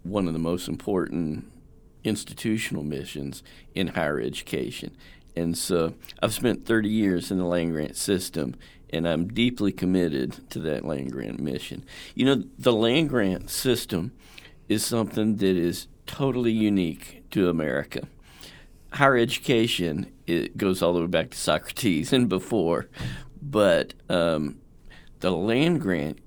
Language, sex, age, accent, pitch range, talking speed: English, male, 50-69, American, 85-110 Hz, 140 wpm